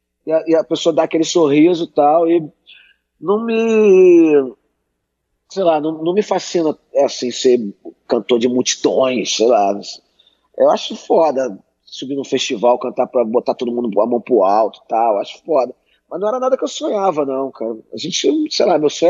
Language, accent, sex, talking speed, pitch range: Portuguese, Brazilian, male, 190 wpm, 130-185 Hz